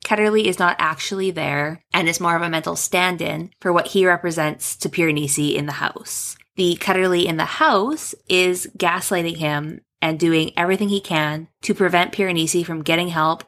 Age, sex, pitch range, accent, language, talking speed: 20-39, female, 165-215 Hz, American, English, 180 wpm